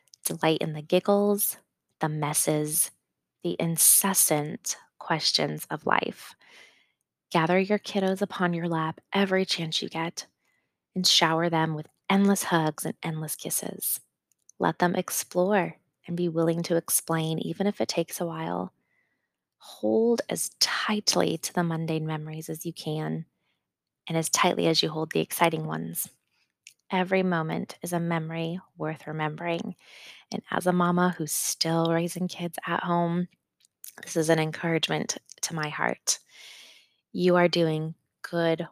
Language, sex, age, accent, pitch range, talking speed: English, female, 20-39, American, 160-180 Hz, 140 wpm